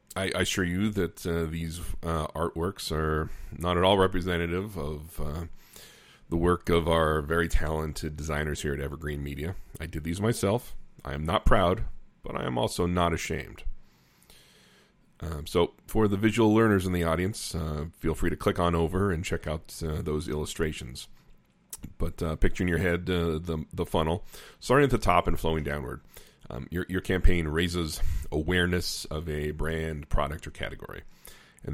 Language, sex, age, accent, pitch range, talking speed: English, male, 40-59, American, 75-90 Hz, 175 wpm